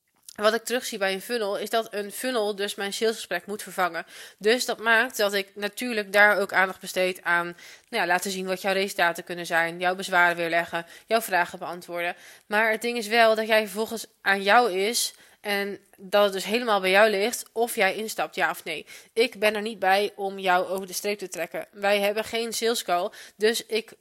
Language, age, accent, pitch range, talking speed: Dutch, 20-39, Dutch, 185-220 Hz, 210 wpm